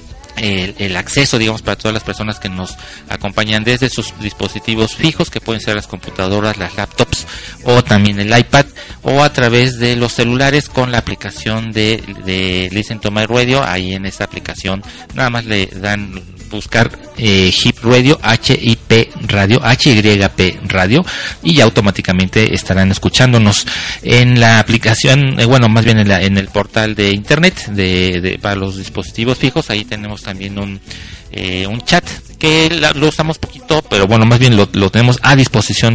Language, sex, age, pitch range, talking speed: Spanish, male, 40-59, 95-120 Hz, 180 wpm